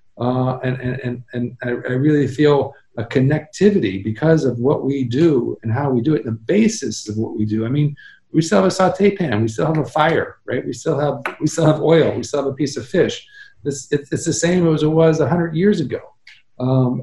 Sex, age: male, 50-69